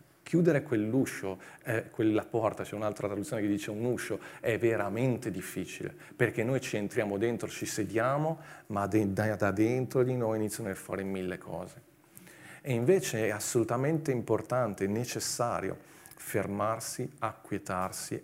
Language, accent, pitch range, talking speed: Italian, native, 100-120 Hz, 140 wpm